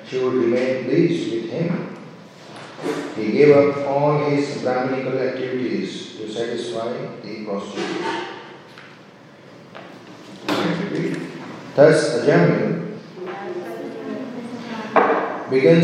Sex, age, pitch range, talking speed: male, 50-69, 130-175 Hz, 80 wpm